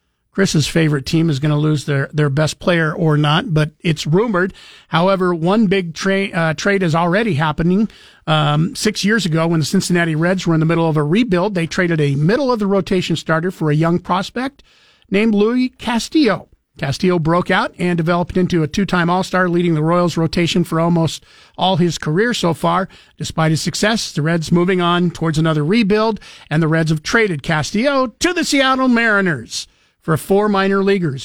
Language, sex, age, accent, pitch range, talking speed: English, male, 50-69, American, 155-185 Hz, 185 wpm